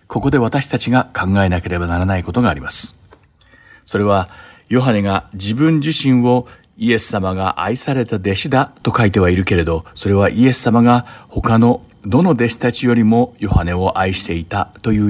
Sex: male